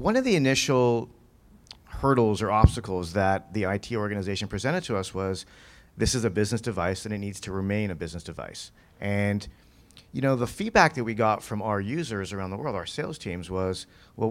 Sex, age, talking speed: male, 40-59, 195 wpm